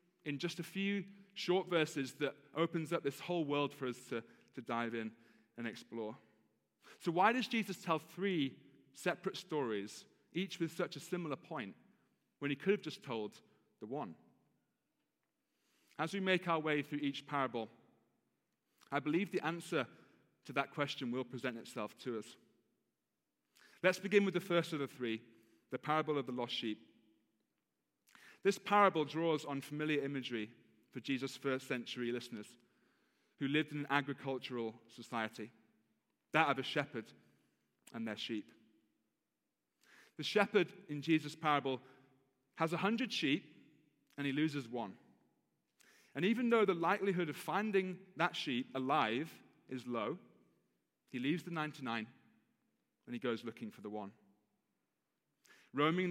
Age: 30-49